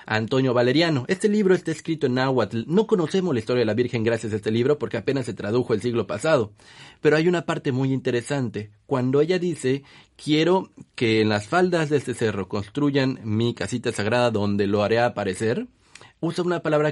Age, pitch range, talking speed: 40-59, 110-145 Hz, 190 wpm